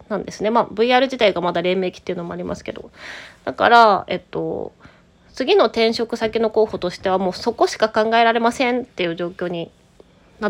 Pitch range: 190-250 Hz